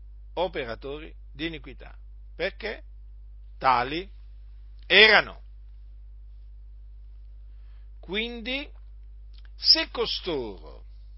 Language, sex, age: Italian, male, 50-69